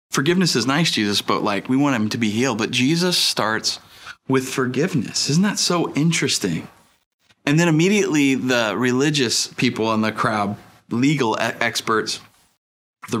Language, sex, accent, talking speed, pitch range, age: English, male, American, 150 wpm, 105-140 Hz, 30-49